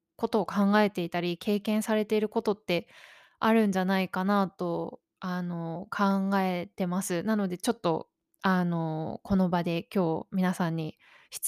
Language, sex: Japanese, female